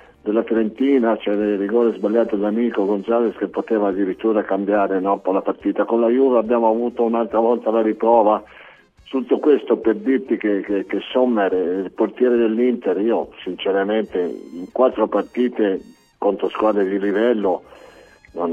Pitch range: 95-130 Hz